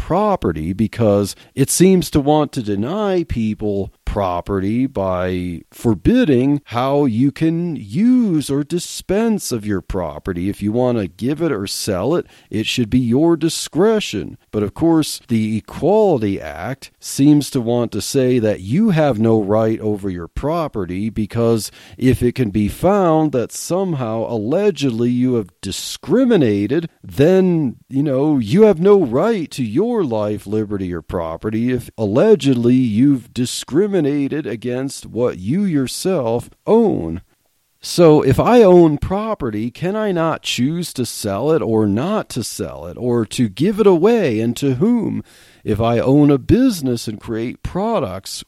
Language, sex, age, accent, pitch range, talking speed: English, male, 40-59, American, 105-155 Hz, 150 wpm